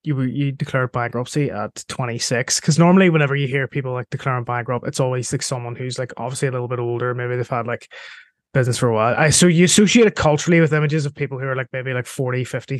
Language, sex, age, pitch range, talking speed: English, male, 20-39, 125-155 Hz, 240 wpm